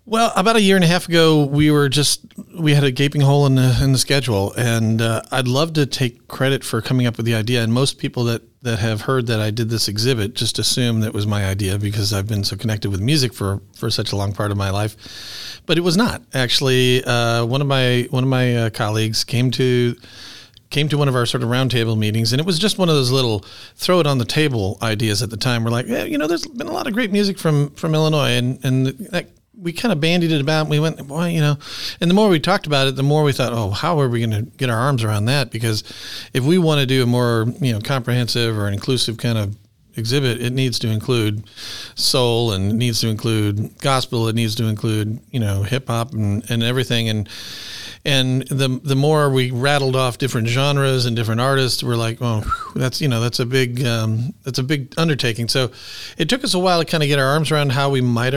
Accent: American